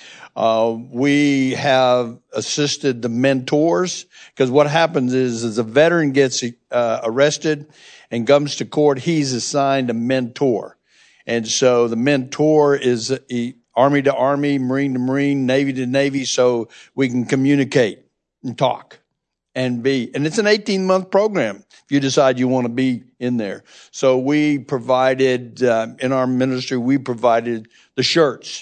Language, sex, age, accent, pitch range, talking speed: English, male, 60-79, American, 125-145 Hz, 150 wpm